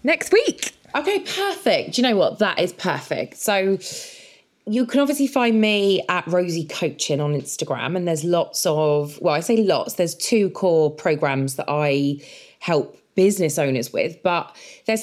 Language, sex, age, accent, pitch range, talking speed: English, female, 20-39, British, 155-210 Hz, 165 wpm